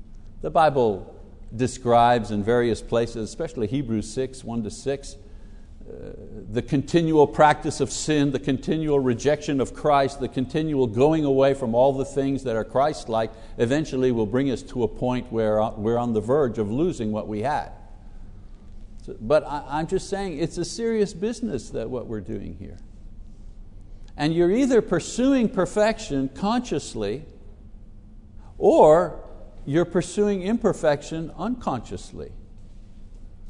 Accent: American